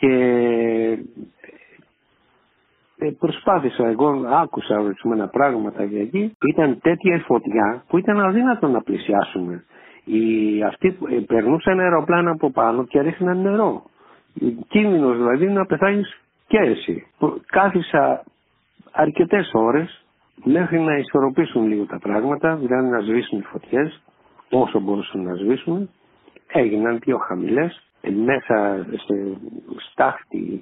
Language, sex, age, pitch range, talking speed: Greek, male, 60-79, 115-170 Hz, 105 wpm